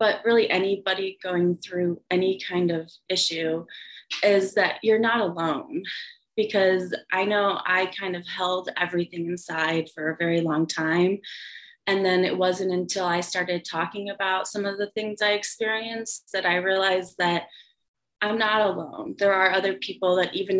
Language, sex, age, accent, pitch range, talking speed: English, female, 20-39, American, 175-200 Hz, 165 wpm